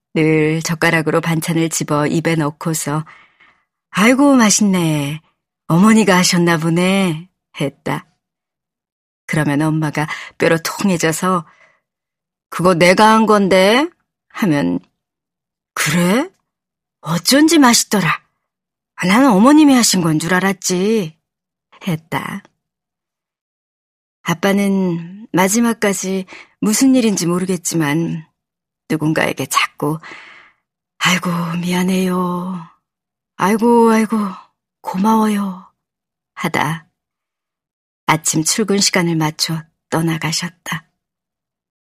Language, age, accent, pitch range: Korean, 40-59, native, 165-205 Hz